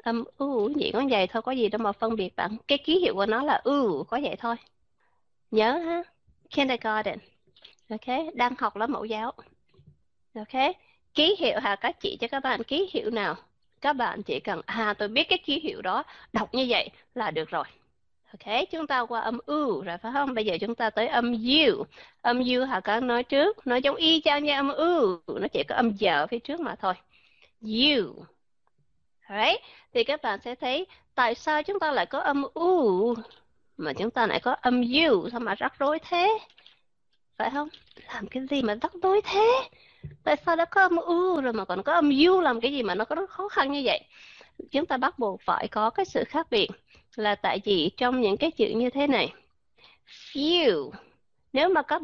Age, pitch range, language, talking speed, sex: 20-39, 230-320 Hz, Vietnamese, 210 wpm, female